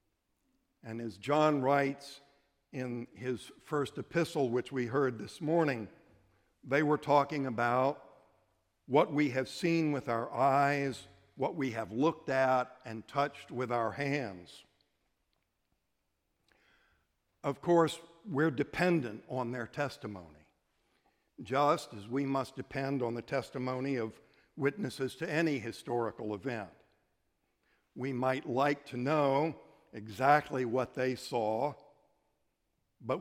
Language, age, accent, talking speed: English, 60-79, American, 115 wpm